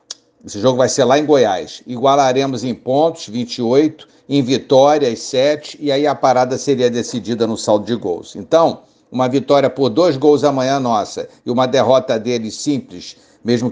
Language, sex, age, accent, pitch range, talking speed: Portuguese, male, 60-79, Brazilian, 125-155 Hz, 165 wpm